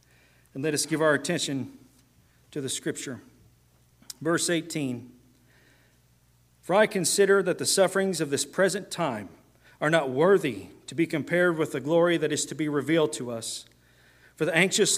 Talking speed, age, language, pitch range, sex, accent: 160 wpm, 40-59, English, 140-180 Hz, male, American